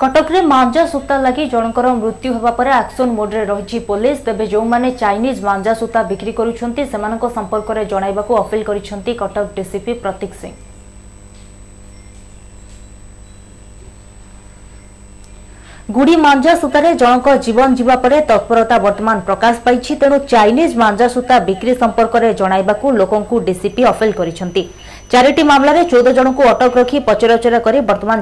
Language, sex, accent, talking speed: Hindi, female, native, 115 wpm